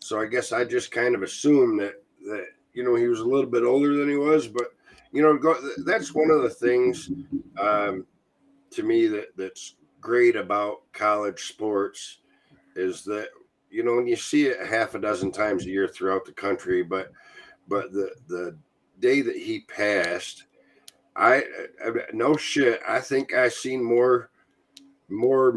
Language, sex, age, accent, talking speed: English, male, 50-69, American, 175 wpm